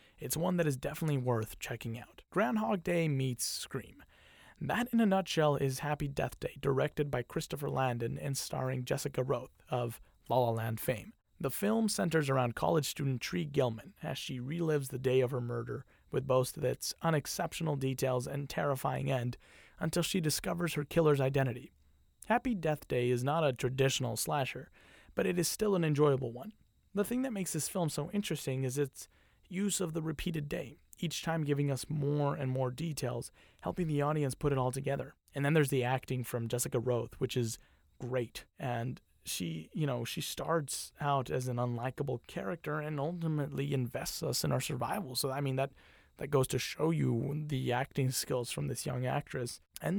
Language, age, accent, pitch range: English, 30-49, American, 125-160 Hz